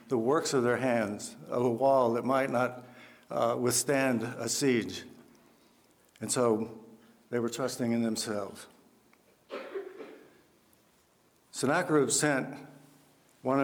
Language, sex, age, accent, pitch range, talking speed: English, male, 60-79, American, 115-135 Hz, 110 wpm